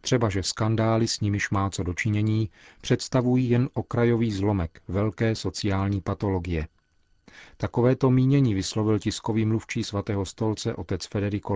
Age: 40-59